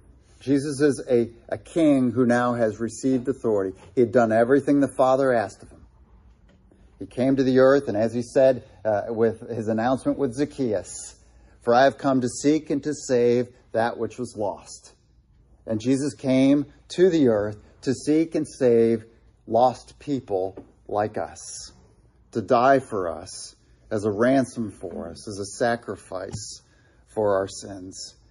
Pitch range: 105-135 Hz